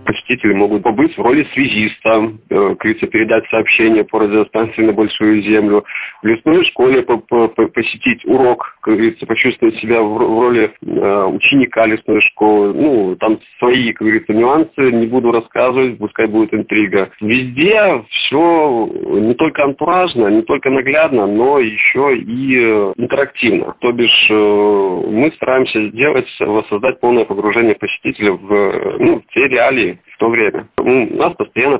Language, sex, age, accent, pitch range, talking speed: Russian, male, 30-49, native, 110-145 Hz, 130 wpm